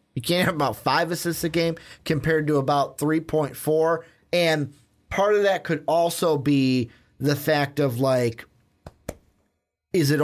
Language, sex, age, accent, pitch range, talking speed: English, male, 30-49, American, 130-160 Hz, 145 wpm